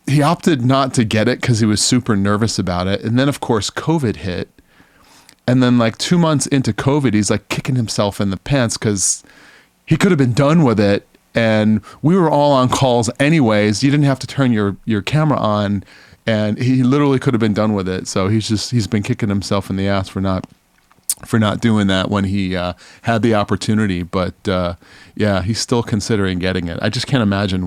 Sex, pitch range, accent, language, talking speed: male, 100-125 Hz, American, English, 215 wpm